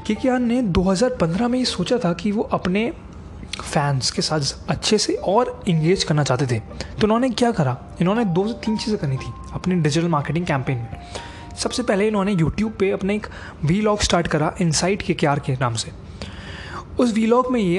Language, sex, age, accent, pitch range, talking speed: Hindi, male, 20-39, native, 145-205 Hz, 190 wpm